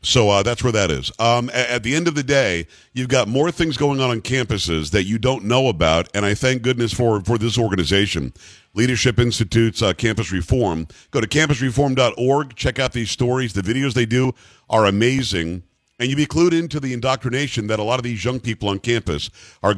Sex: male